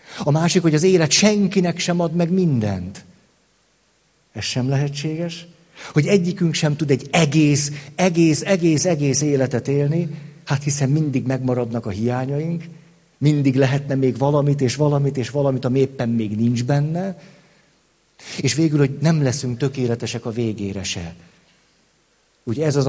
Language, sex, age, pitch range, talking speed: Hungarian, male, 50-69, 125-170 Hz, 145 wpm